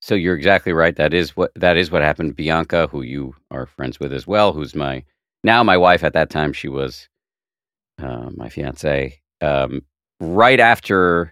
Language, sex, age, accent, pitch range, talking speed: English, male, 50-69, American, 70-90 Hz, 185 wpm